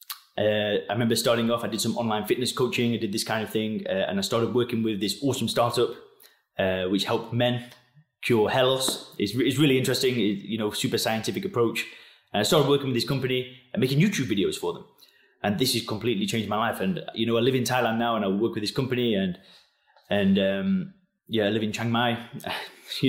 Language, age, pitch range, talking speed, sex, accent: English, 20-39, 115-150 Hz, 220 wpm, male, British